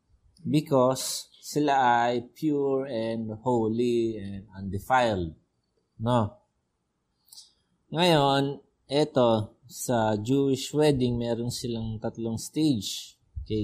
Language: Filipino